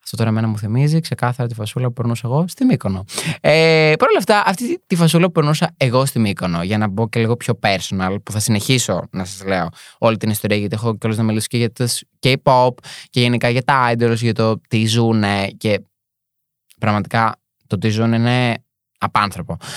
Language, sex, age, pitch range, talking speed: Greek, male, 20-39, 115-160 Hz, 190 wpm